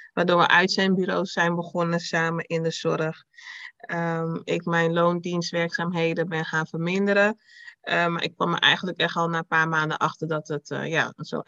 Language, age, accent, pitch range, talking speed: Dutch, 30-49, Dutch, 165-185 Hz, 180 wpm